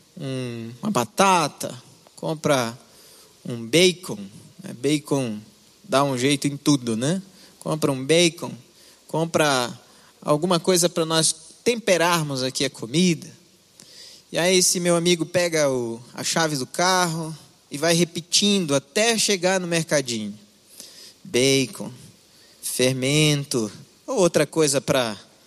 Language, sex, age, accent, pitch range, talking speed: Portuguese, male, 20-39, Brazilian, 135-175 Hz, 115 wpm